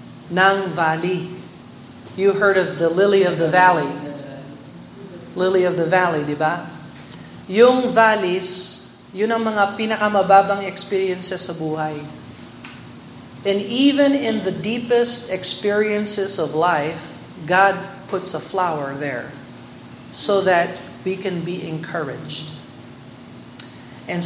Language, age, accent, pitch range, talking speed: Filipino, 50-69, American, 170-205 Hz, 110 wpm